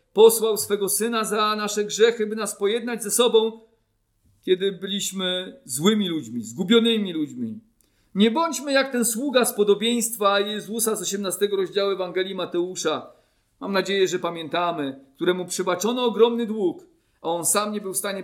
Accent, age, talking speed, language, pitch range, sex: native, 40-59, 150 wpm, Polish, 160-230 Hz, male